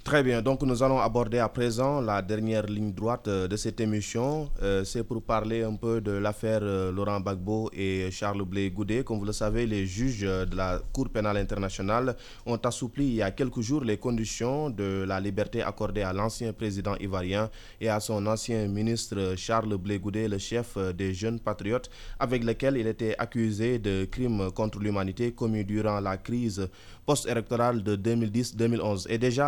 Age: 20-39